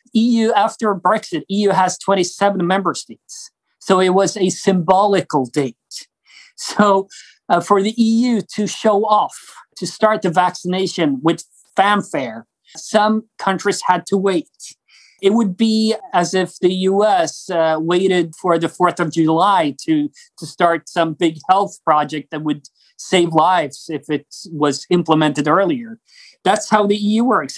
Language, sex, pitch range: English, male, 165-205 Hz